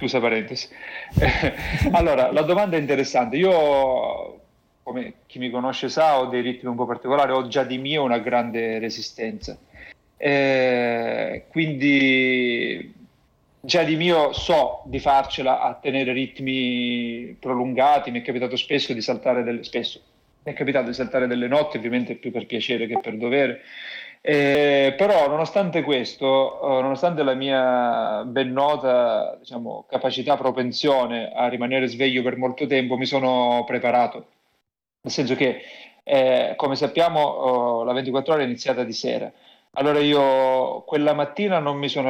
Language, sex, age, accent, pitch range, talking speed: Italian, male, 40-59, native, 125-145 Hz, 145 wpm